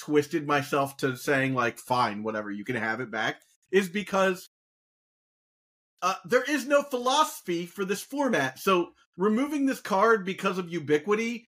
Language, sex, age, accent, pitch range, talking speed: English, male, 30-49, American, 145-195 Hz, 150 wpm